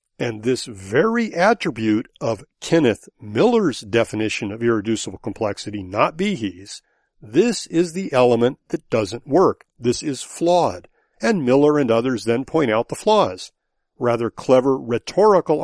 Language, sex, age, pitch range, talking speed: English, male, 50-69, 115-160 Hz, 135 wpm